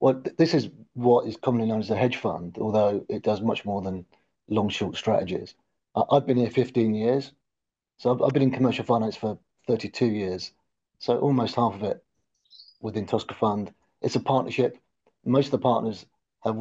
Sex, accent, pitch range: male, British, 110-130 Hz